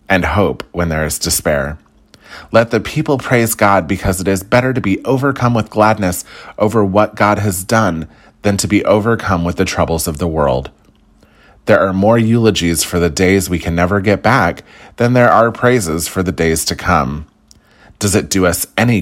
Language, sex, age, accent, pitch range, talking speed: English, male, 30-49, American, 80-105 Hz, 190 wpm